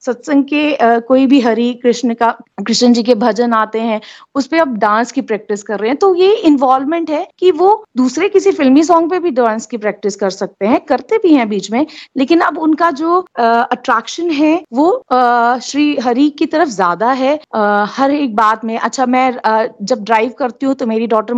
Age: 30-49